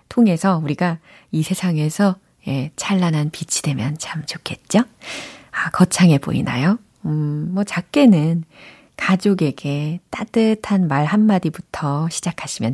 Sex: female